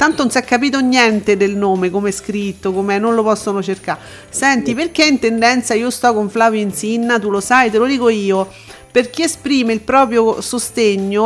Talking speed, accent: 205 wpm, native